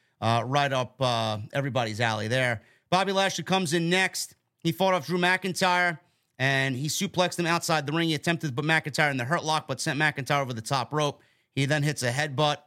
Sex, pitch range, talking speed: male, 130-170 Hz, 215 wpm